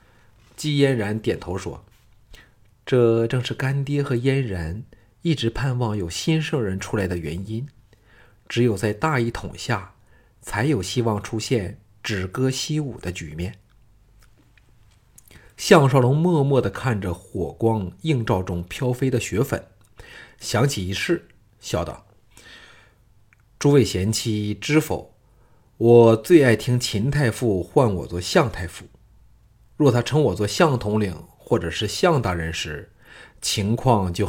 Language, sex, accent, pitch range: Chinese, male, native, 105-125 Hz